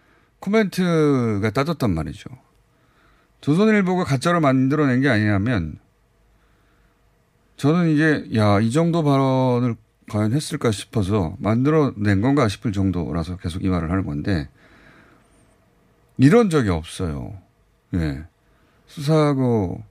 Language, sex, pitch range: Korean, male, 95-140 Hz